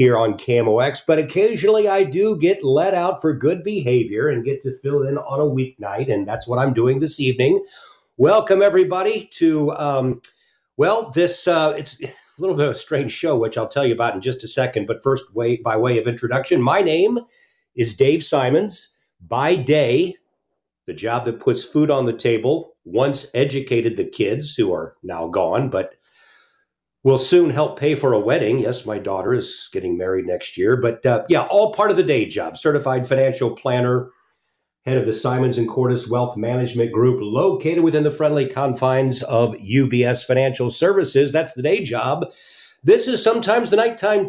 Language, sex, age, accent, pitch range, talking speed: English, male, 50-69, American, 125-185 Hz, 185 wpm